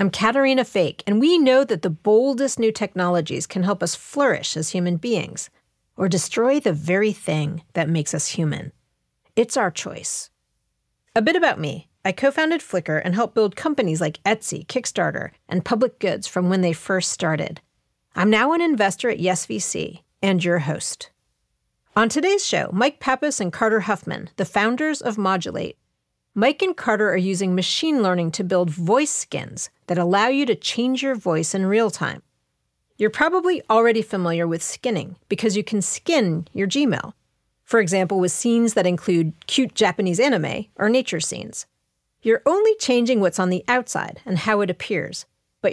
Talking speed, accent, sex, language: 170 wpm, American, female, English